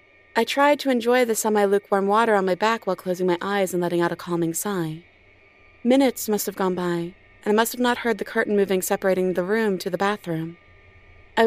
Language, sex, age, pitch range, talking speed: English, female, 30-49, 185-230 Hz, 215 wpm